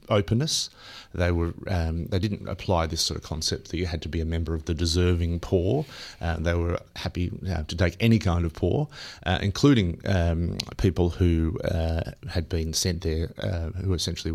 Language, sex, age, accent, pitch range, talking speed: English, male, 30-49, Australian, 85-100 Hz, 190 wpm